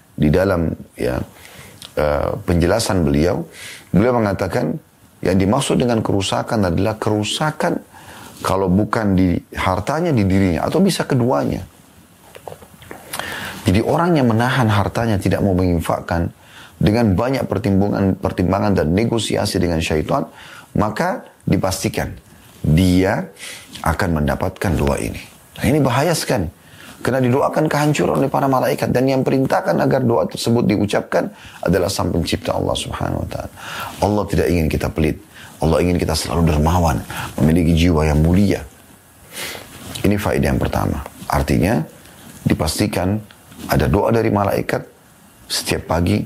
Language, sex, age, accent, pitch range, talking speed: Indonesian, male, 30-49, native, 85-115 Hz, 125 wpm